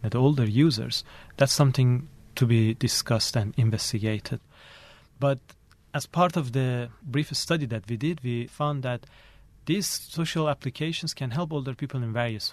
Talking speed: 155 wpm